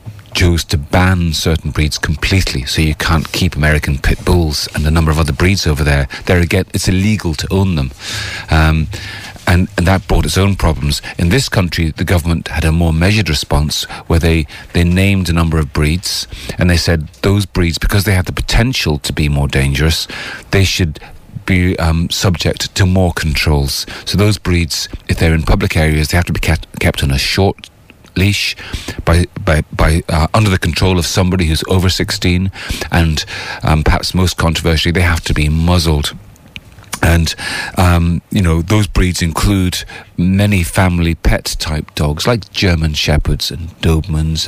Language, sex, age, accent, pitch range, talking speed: English, male, 40-59, British, 80-95 Hz, 175 wpm